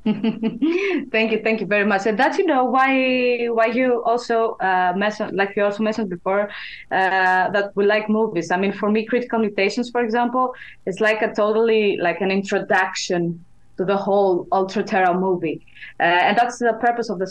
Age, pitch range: 20-39, 180-220 Hz